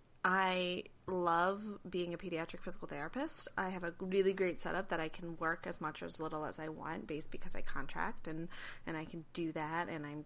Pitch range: 170-215 Hz